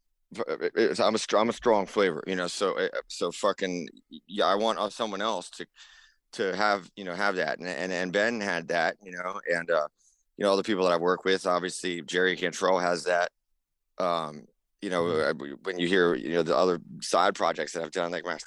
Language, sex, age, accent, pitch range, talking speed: English, male, 30-49, American, 90-110 Hz, 210 wpm